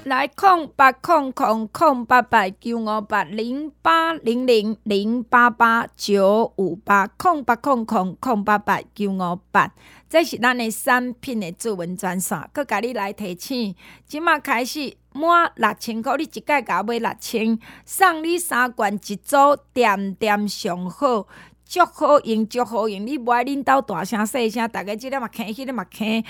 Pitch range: 210-290 Hz